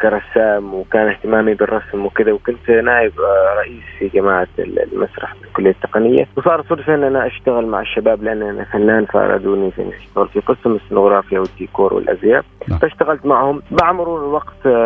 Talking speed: 140 wpm